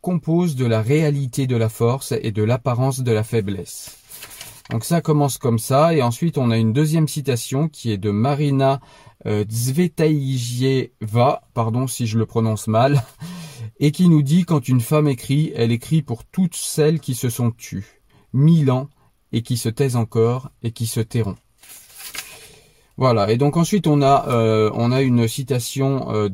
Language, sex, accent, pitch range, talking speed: French, male, French, 115-140 Hz, 175 wpm